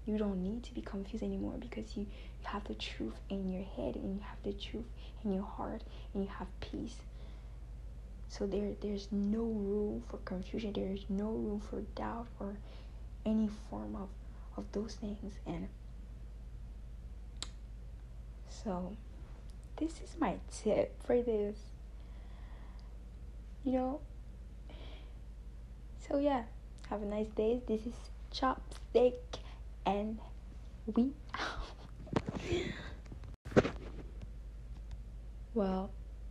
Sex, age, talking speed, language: female, 20-39, 115 wpm, English